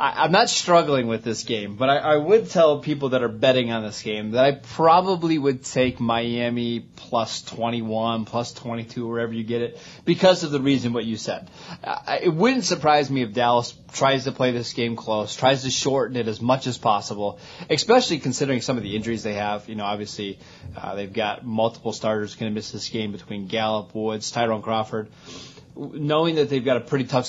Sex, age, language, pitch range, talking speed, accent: male, 20-39, English, 115-140 Hz, 200 wpm, American